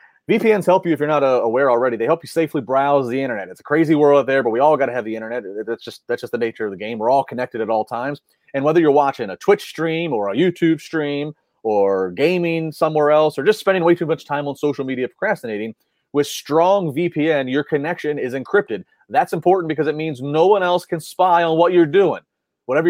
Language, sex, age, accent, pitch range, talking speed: English, male, 30-49, American, 135-175 Hz, 250 wpm